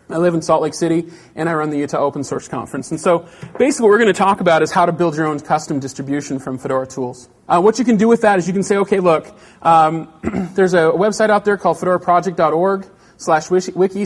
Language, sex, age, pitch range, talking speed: English, male, 30-49, 150-190 Hz, 245 wpm